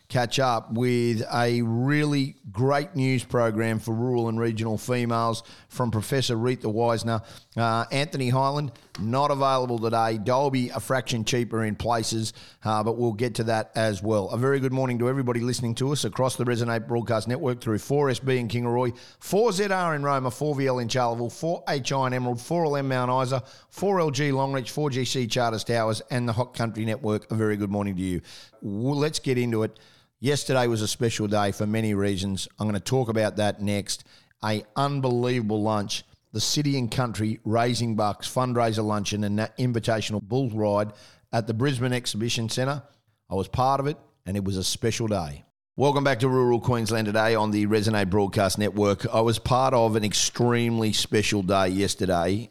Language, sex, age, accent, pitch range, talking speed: English, male, 30-49, Australian, 105-130 Hz, 175 wpm